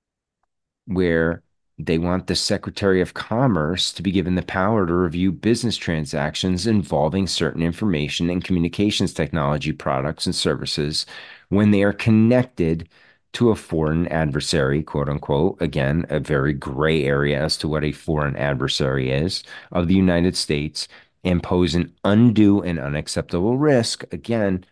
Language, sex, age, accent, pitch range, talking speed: English, male, 40-59, American, 80-100 Hz, 140 wpm